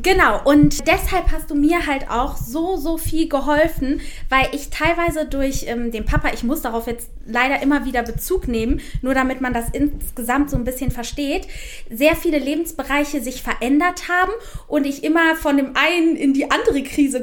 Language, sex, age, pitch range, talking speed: German, female, 20-39, 255-320 Hz, 185 wpm